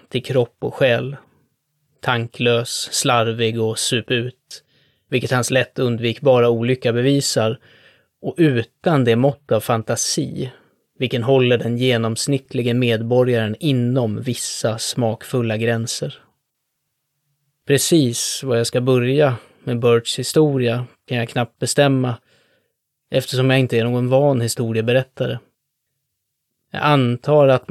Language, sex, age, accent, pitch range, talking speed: Swedish, male, 20-39, native, 115-135 Hz, 110 wpm